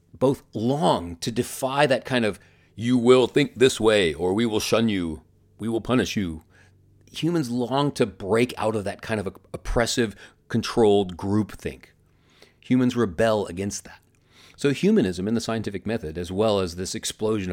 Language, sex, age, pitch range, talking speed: English, male, 40-59, 95-130 Hz, 165 wpm